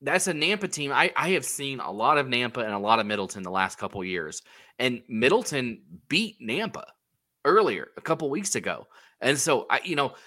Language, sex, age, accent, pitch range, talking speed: English, male, 20-39, American, 110-150 Hz, 215 wpm